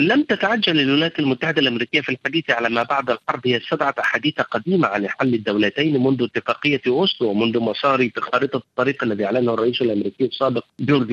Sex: male